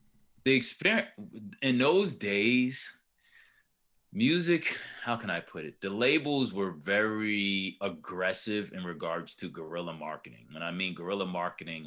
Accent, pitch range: American, 95-125 Hz